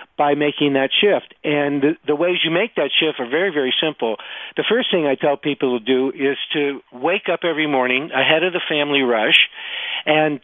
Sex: male